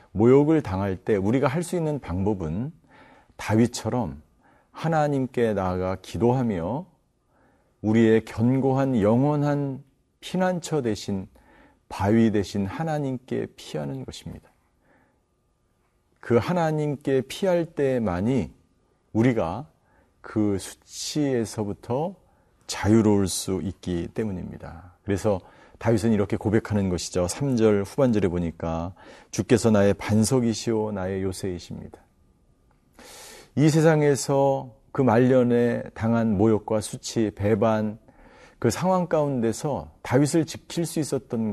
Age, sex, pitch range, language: 40-59, male, 100-135 Hz, Korean